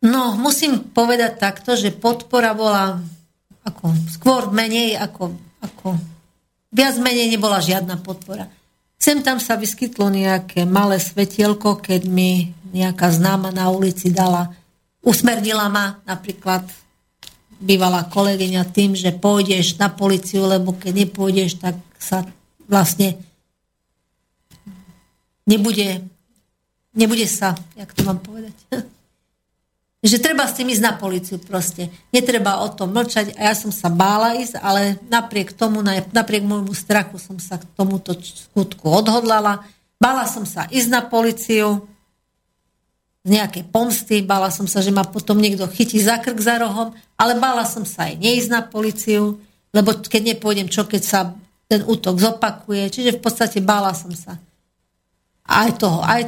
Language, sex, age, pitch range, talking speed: Slovak, female, 50-69, 185-225 Hz, 140 wpm